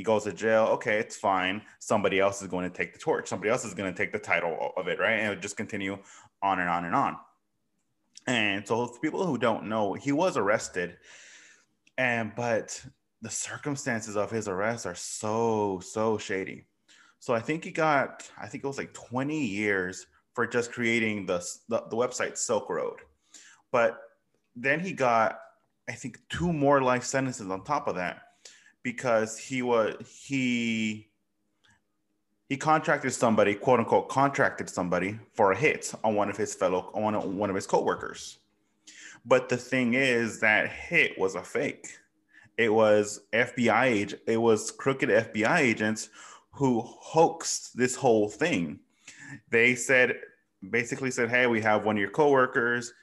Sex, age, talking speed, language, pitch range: male, 20-39, 170 wpm, English, 105-125 Hz